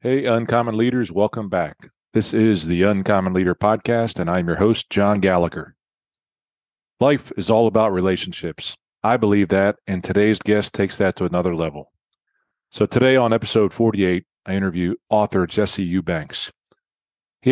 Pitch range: 90-110 Hz